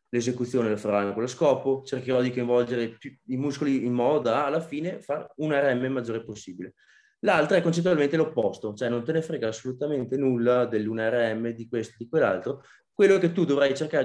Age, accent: 20-39, native